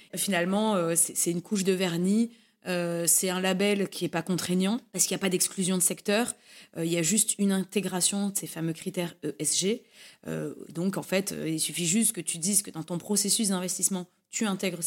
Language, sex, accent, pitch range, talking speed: French, female, French, 175-220 Hz, 195 wpm